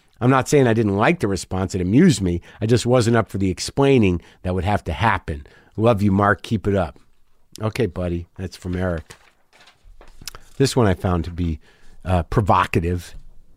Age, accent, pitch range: 50-69, American, 95-135 Hz